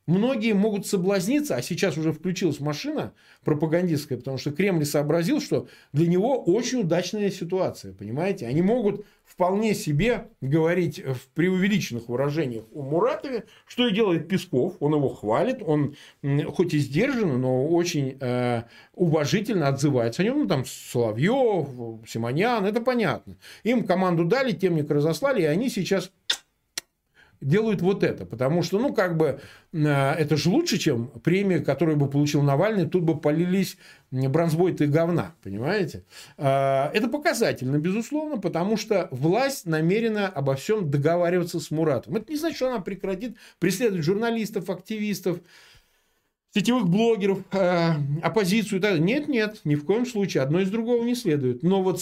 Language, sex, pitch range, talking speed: Russian, male, 145-205 Hz, 145 wpm